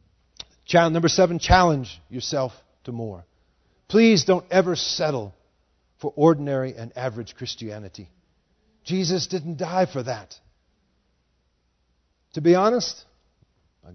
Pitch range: 110-165 Hz